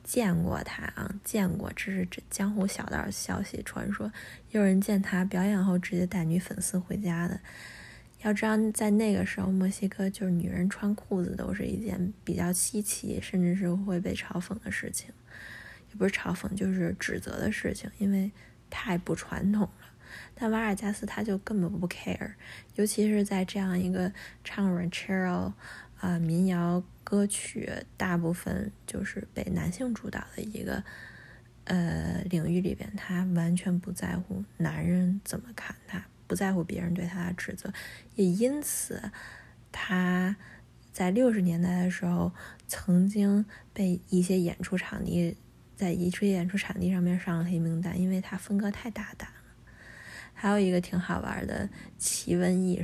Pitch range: 180-200 Hz